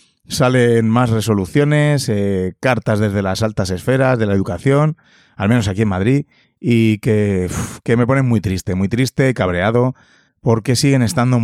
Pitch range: 95-125 Hz